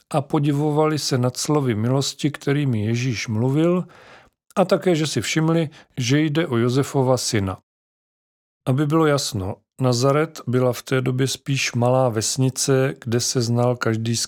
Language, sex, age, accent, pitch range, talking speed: Czech, male, 40-59, native, 115-140 Hz, 145 wpm